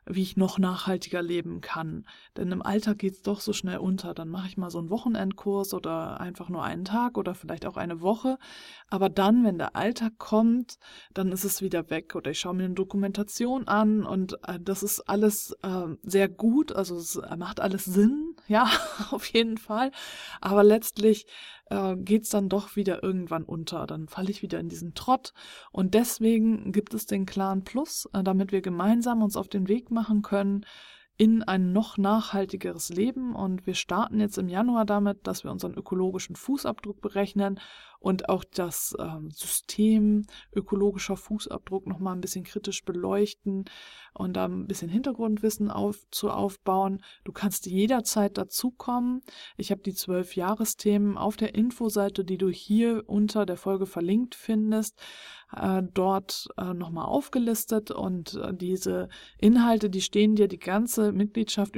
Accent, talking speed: German, 170 wpm